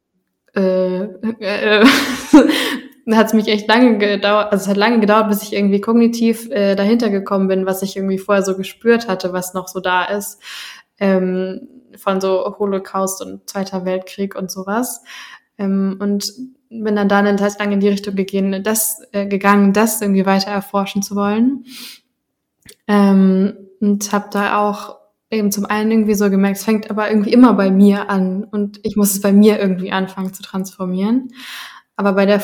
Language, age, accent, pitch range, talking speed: English, 10-29, German, 190-215 Hz, 175 wpm